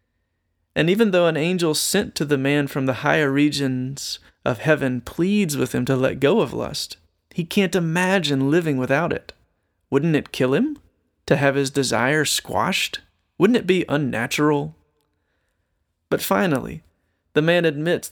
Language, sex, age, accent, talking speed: English, male, 30-49, American, 155 wpm